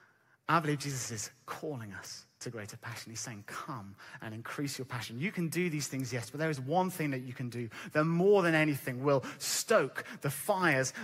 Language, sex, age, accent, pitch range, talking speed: English, male, 30-49, British, 135-180 Hz, 210 wpm